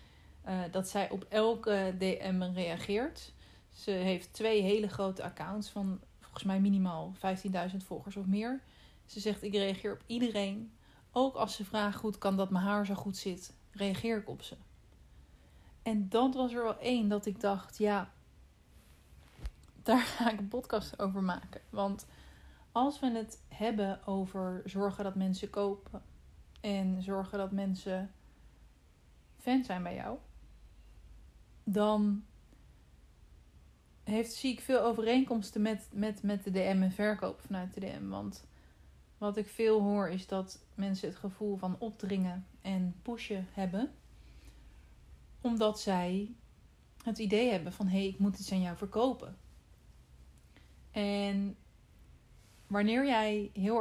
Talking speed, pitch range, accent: 135 wpm, 180-215 Hz, Dutch